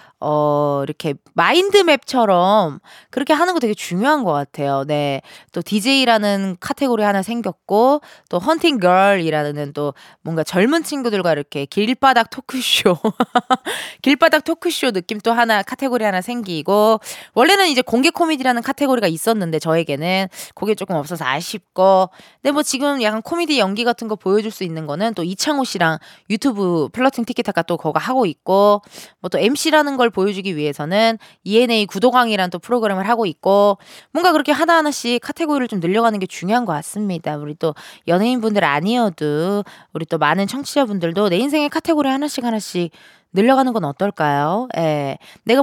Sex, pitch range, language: female, 175-260 Hz, Korean